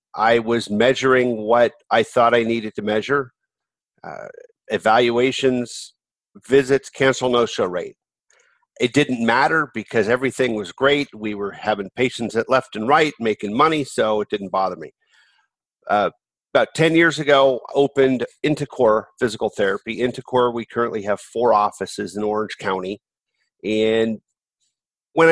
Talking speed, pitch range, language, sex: 140 wpm, 110-145 Hz, English, male